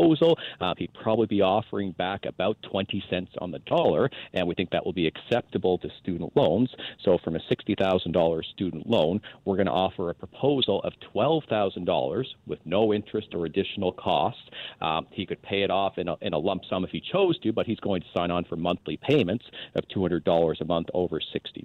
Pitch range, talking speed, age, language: 85-105 Hz, 200 wpm, 40-59, English